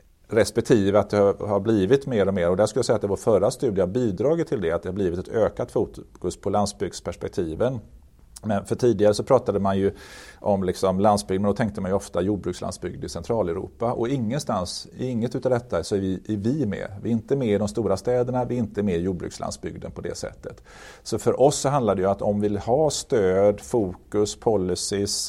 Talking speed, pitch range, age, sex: 220 wpm, 95-115 Hz, 40-59, male